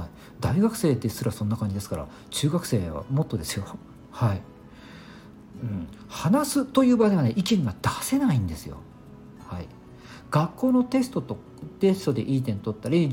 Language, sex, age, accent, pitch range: Japanese, male, 50-69, native, 105-175 Hz